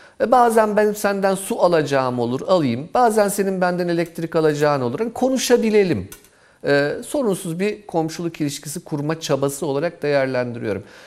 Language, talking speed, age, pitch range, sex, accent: Turkish, 125 wpm, 40-59, 125-180 Hz, male, native